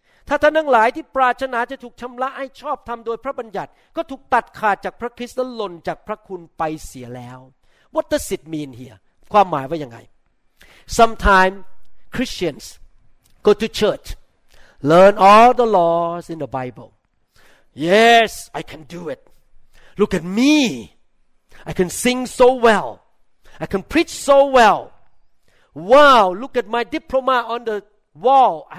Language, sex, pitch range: Thai, male, 175-245 Hz